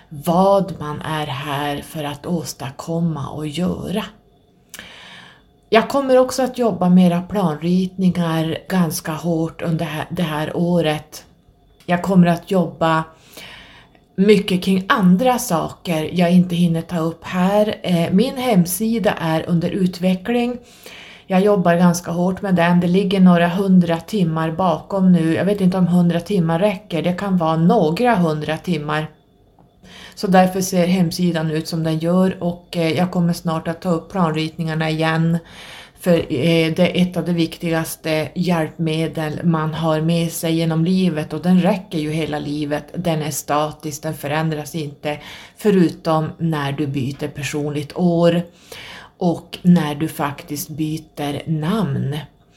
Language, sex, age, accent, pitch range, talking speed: Swedish, female, 30-49, native, 155-180 Hz, 140 wpm